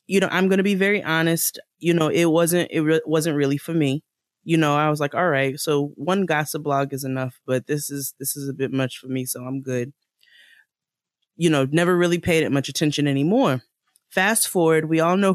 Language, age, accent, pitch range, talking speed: English, 20-39, American, 145-180 Hz, 225 wpm